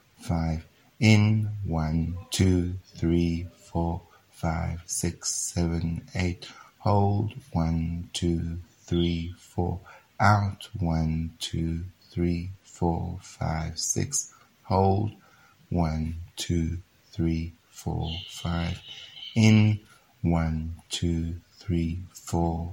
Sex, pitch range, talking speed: male, 85-105 Hz, 85 wpm